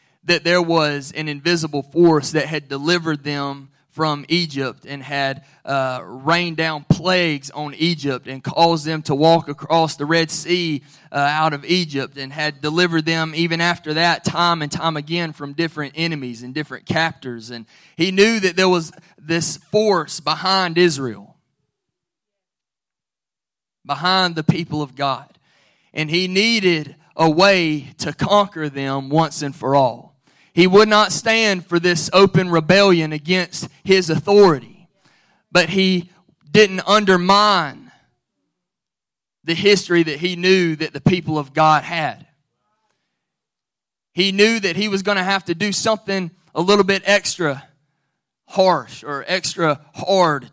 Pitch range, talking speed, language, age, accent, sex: 145-180 Hz, 145 wpm, English, 20-39, American, male